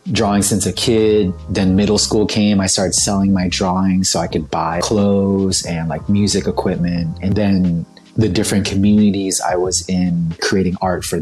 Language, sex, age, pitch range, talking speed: English, male, 30-49, 90-110 Hz, 175 wpm